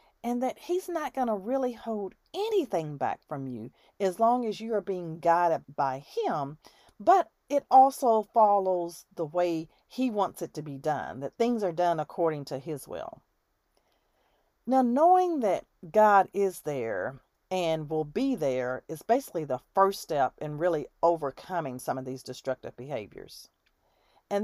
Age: 40-59